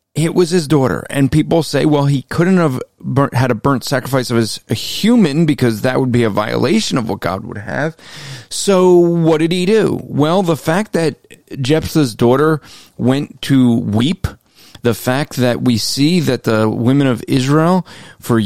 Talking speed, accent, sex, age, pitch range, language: 180 wpm, American, male, 30-49, 115-155 Hz, English